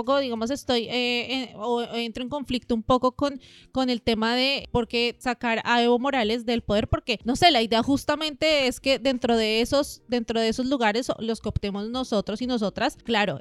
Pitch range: 225-270 Hz